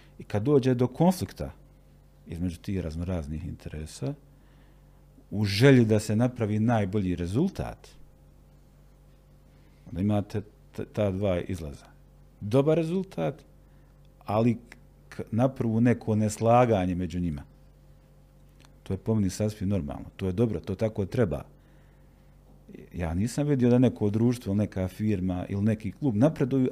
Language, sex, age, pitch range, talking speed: Croatian, male, 50-69, 90-125 Hz, 125 wpm